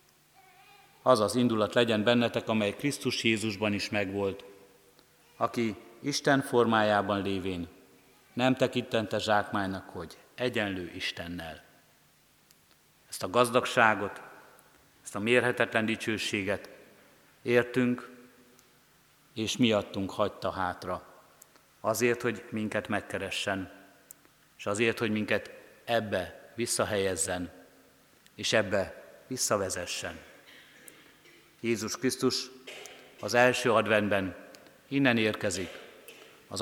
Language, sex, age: Hungarian, male, 60-79